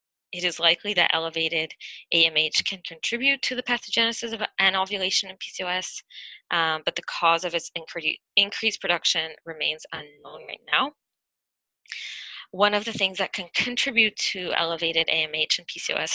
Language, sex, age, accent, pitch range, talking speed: English, female, 20-39, American, 160-200 Hz, 145 wpm